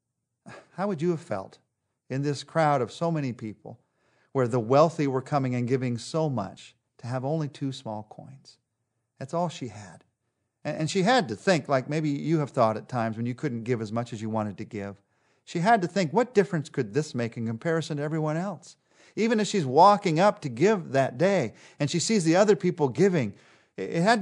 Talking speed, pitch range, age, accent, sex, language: 215 wpm, 125-170 Hz, 40-59, American, male, English